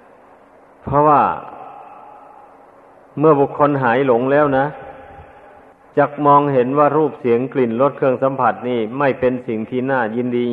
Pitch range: 120-140 Hz